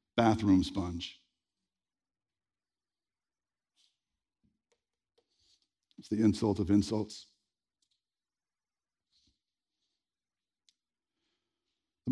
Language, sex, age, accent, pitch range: English, male, 60-79, American, 110-140 Hz